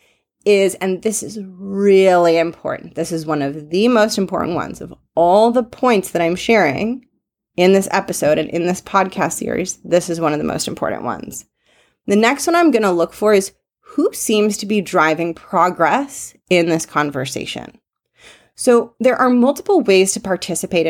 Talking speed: 180 wpm